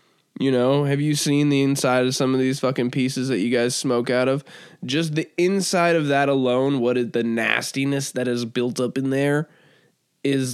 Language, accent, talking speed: English, American, 205 wpm